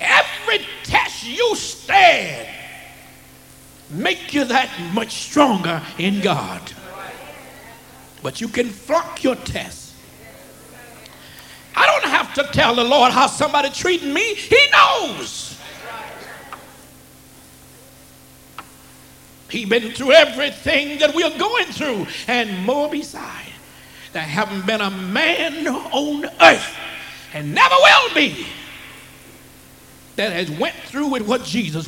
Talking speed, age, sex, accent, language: 110 wpm, 60-79, male, American, English